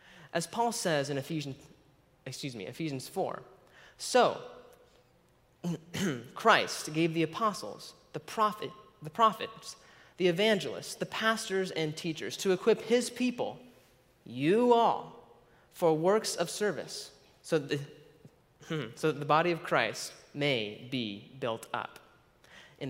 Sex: male